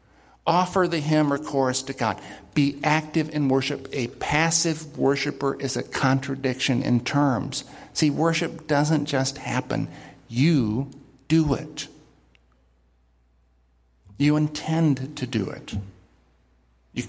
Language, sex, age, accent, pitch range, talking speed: English, male, 50-69, American, 100-145 Hz, 115 wpm